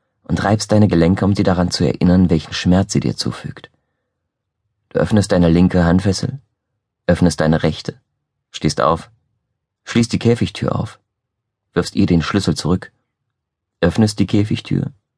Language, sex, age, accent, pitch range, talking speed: German, male, 30-49, German, 90-115 Hz, 140 wpm